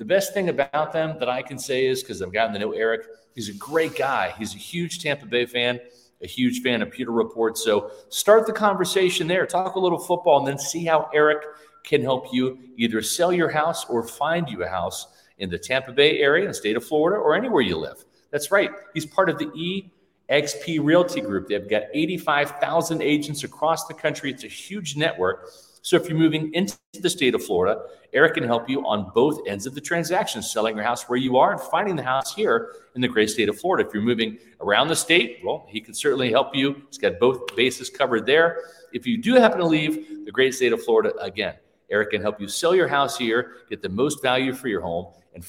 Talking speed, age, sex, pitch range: 230 wpm, 40-59, male, 120-180 Hz